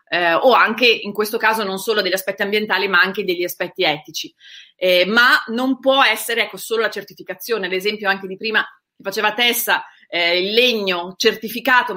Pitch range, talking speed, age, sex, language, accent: 195-240 Hz, 185 wpm, 30-49, female, Italian, native